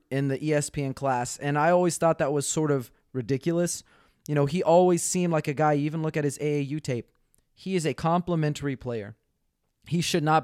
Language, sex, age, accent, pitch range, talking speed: English, male, 30-49, American, 135-170 Hz, 200 wpm